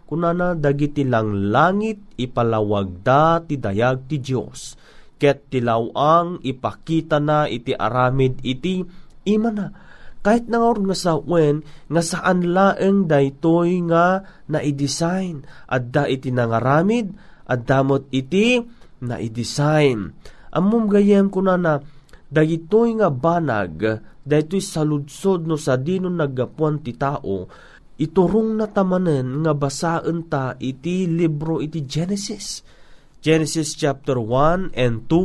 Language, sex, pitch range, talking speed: Filipino, male, 140-190 Hz, 105 wpm